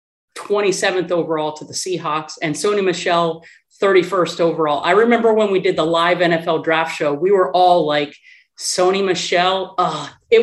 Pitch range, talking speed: 170-210 Hz, 160 wpm